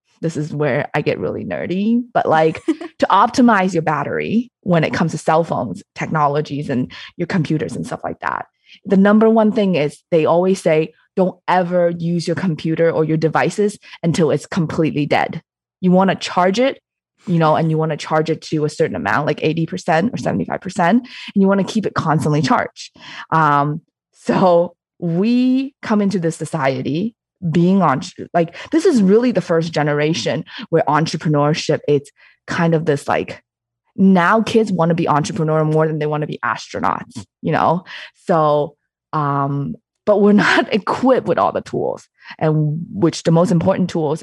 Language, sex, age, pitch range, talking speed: English, female, 20-39, 155-195 Hz, 175 wpm